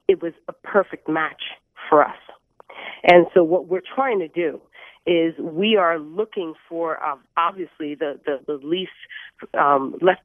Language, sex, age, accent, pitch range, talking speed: English, female, 40-59, American, 165-205 Hz, 160 wpm